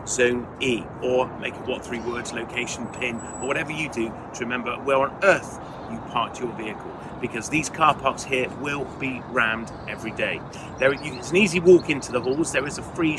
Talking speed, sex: 205 wpm, male